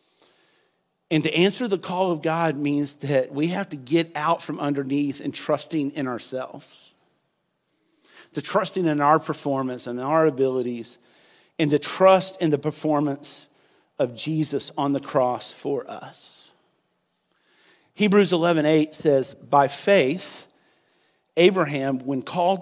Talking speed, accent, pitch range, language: 130 wpm, American, 140-175 Hz, English